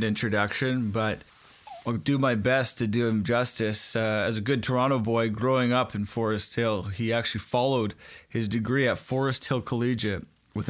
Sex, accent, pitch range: male, American, 110-135 Hz